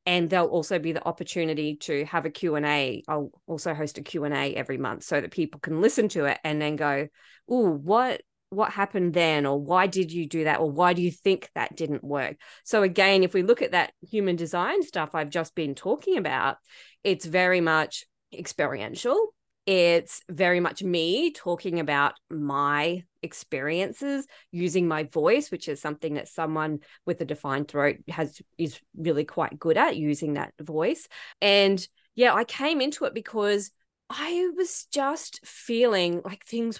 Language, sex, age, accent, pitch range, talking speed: English, female, 20-39, Australian, 155-200 Hz, 180 wpm